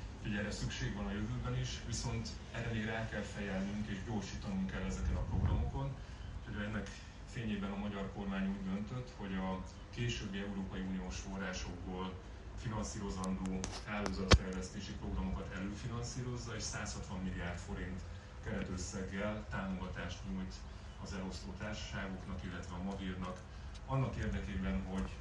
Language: Hungarian